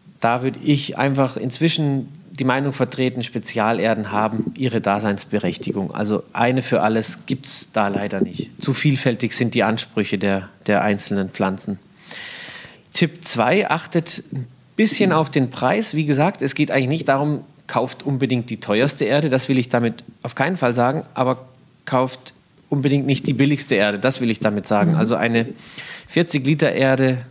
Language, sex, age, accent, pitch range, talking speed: German, male, 40-59, German, 115-145 Hz, 160 wpm